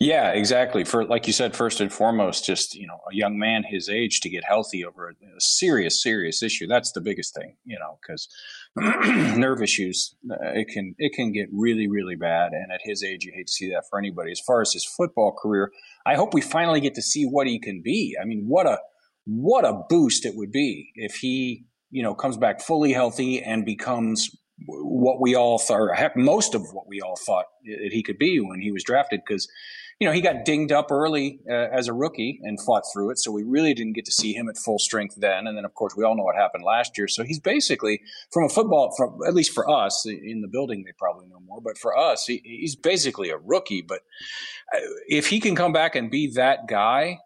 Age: 40-59